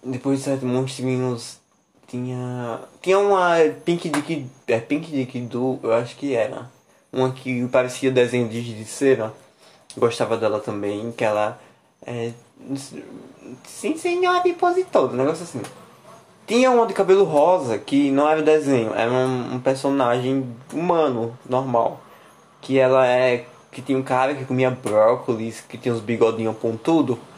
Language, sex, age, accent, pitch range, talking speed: Portuguese, male, 20-39, Brazilian, 120-155 Hz, 145 wpm